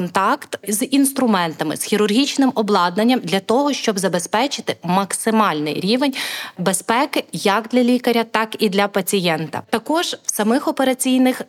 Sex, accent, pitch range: female, native, 200-245 Hz